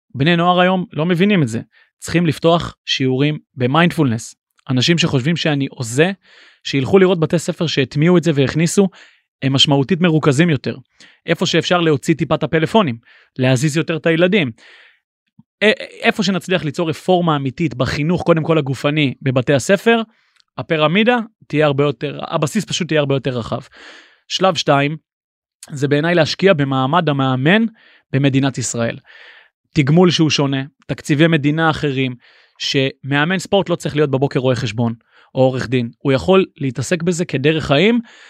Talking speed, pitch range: 145 wpm, 135-175 Hz